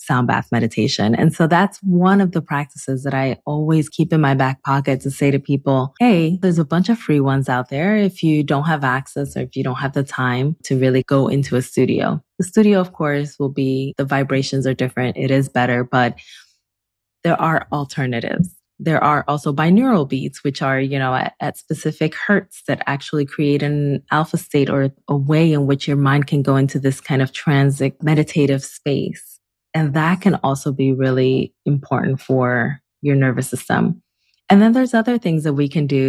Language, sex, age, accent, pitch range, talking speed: English, female, 20-39, American, 135-160 Hz, 200 wpm